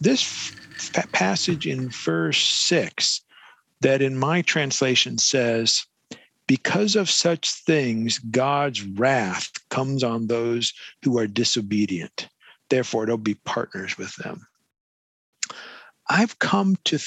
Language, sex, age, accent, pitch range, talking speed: English, male, 50-69, American, 120-165 Hz, 110 wpm